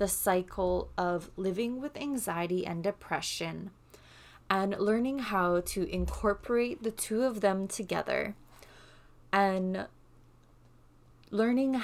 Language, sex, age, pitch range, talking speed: English, female, 20-39, 165-200 Hz, 100 wpm